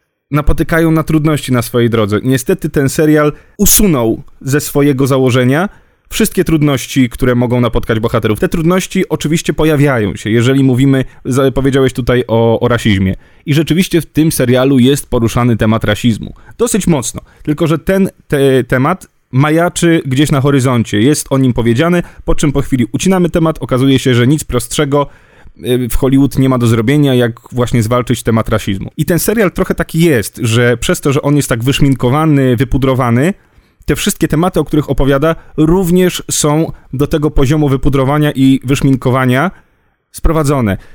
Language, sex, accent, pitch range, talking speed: Polish, male, native, 125-155 Hz, 155 wpm